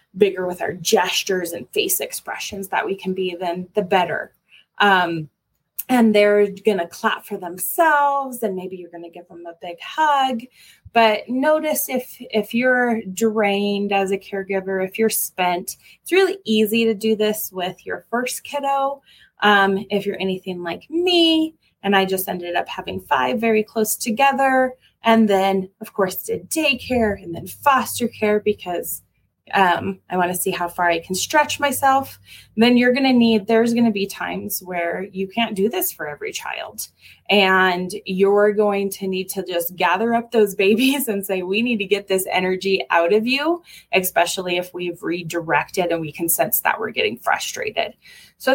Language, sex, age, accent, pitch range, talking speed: English, female, 20-39, American, 185-230 Hz, 180 wpm